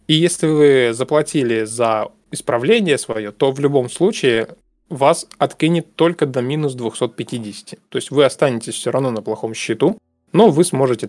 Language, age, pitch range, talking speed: Russian, 20-39, 115-150 Hz, 155 wpm